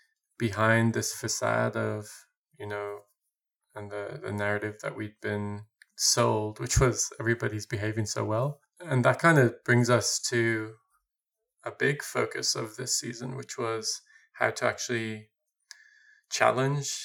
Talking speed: 135 wpm